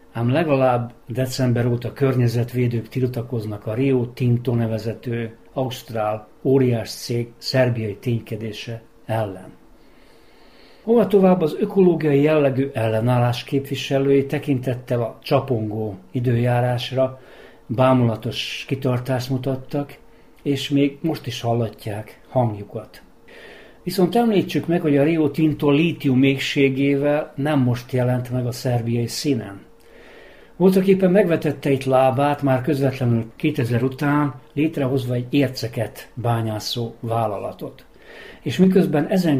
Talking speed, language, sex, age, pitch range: 100 wpm, Hungarian, male, 60-79, 120-145 Hz